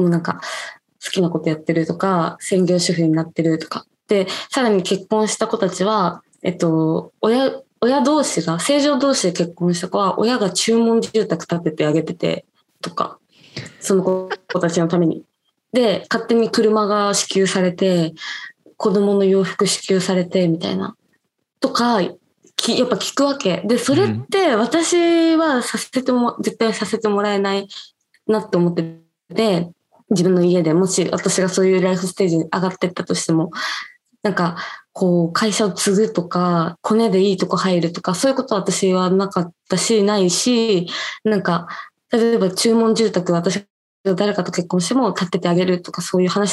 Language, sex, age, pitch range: Japanese, female, 20-39, 180-230 Hz